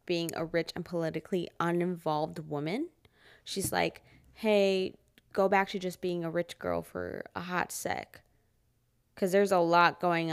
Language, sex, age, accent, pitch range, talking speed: English, female, 20-39, American, 155-200 Hz, 155 wpm